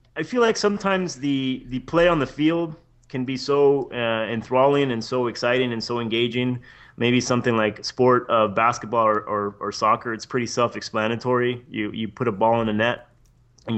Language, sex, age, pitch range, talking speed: English, male, 30-49, 115-140 Hz, 190 wpm